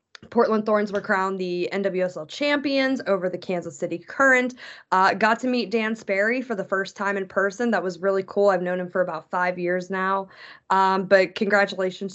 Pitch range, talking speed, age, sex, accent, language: 185-240 Hz, 195 wpm, 20-39, female, American, English